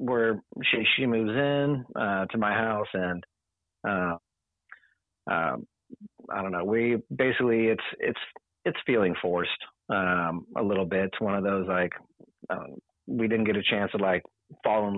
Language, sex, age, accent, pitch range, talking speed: English, male, 30-49, American, 95-110 Hz, 165 wpm